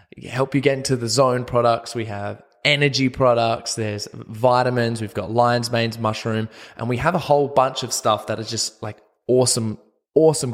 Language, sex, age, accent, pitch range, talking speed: English, male, 20-39, Australian, 110-135 Hz, 180 wpm